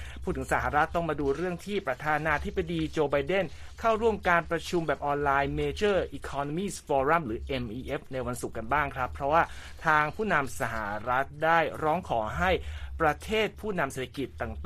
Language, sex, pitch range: Thai, male, 125-170 Hz